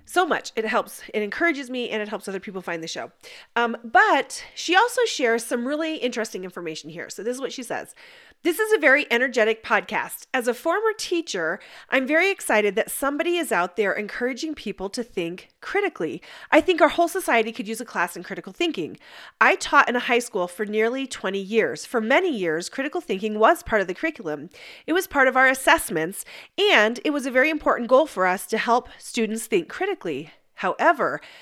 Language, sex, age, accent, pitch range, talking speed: English, female, 30-49, American, 205-310 Hz, 205 wpm